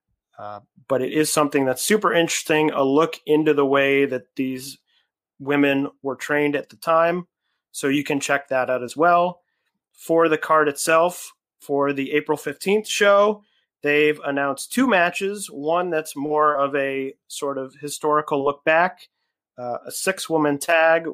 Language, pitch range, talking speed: English, 140-170 Hz, 160 wpm